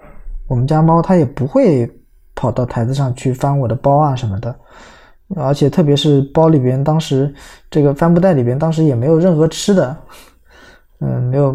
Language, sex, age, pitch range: Chinese, male, 20-39, 125-155 Hz